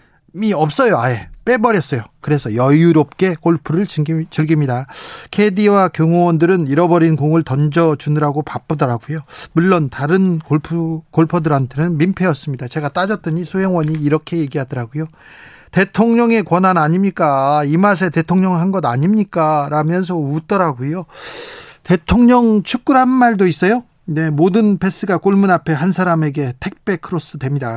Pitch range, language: 150-185 Hz, Korean